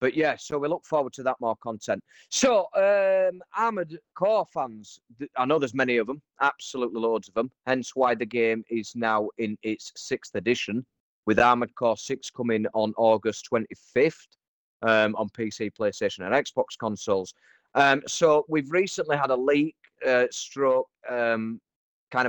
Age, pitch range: 30-49, 110-135 Hz